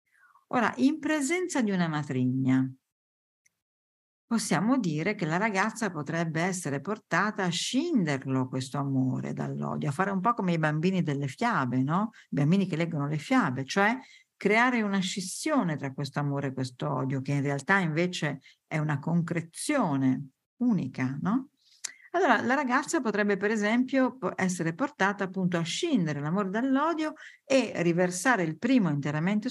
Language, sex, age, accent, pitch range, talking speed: Italian, female, 50-69, native, 145-235 Hz, 145 wpm